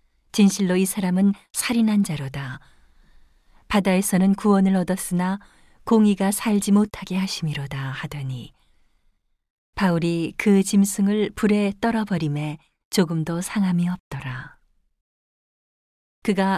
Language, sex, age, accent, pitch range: Korean, female, 40-59, native, 155-200 Hz